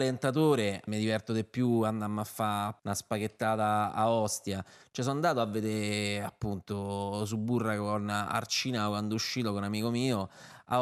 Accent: native